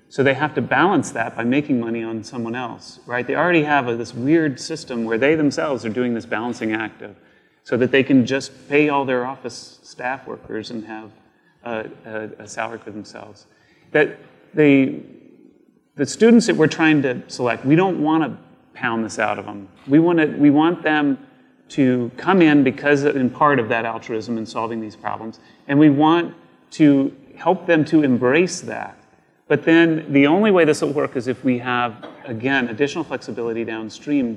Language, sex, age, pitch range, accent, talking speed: English, male, 30-49, 115-150 Hz, American, 190 wpm